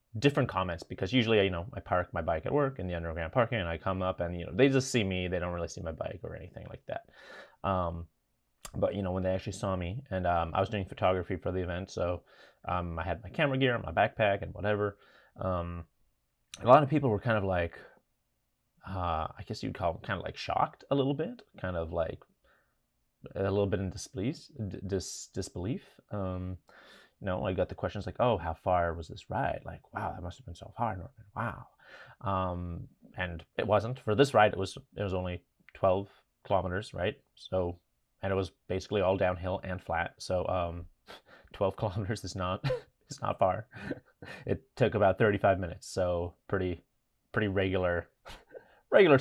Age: 30-49